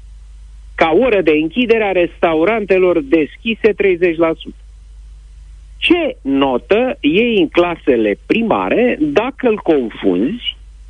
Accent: native